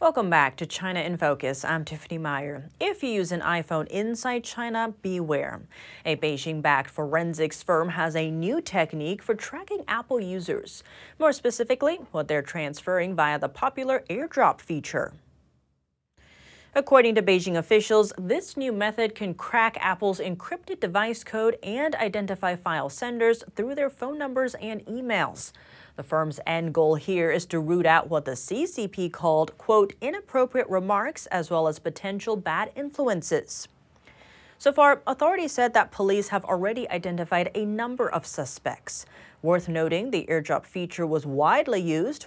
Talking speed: 150 wpm